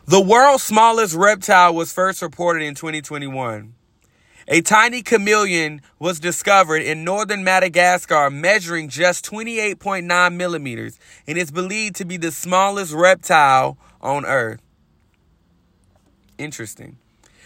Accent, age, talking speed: American, 30-49, 110 wpm